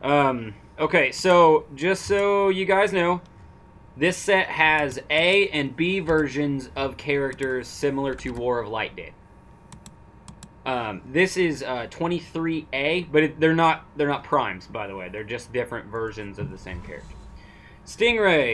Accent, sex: American, male